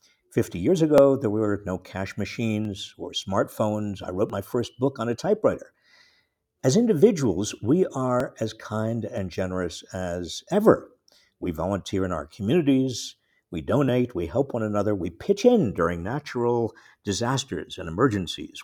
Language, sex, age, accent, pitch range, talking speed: English, male, 50-69, American, 100-135 Hz, 150 wpm